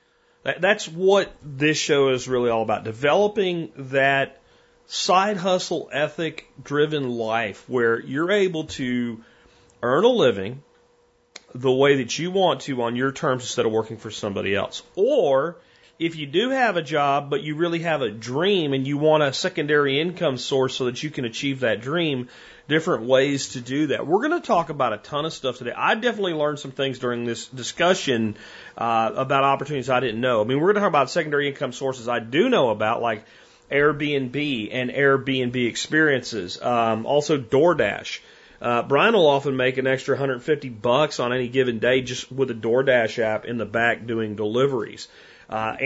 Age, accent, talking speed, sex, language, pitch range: 40-59, American, 180 wpm, male, English, 120-155 Hz